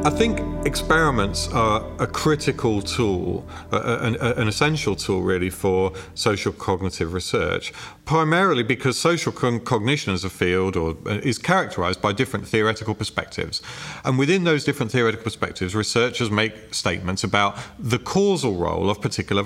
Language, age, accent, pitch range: English, 40-59, British, 95-135 Hz